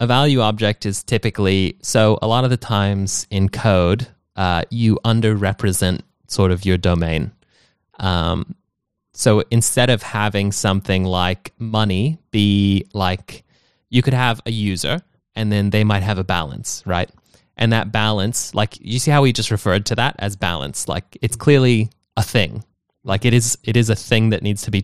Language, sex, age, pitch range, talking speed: English, male, 20-39, 95-115 Hz, 175 wpm